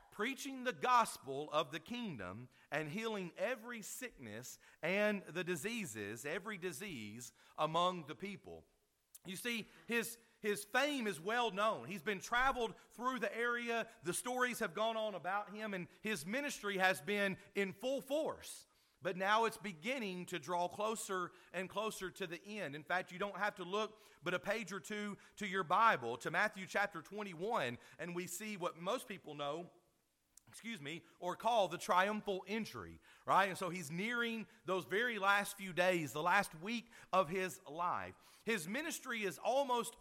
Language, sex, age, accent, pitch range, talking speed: English, male, 40-59, American, 175-225 Hz, 170 wpm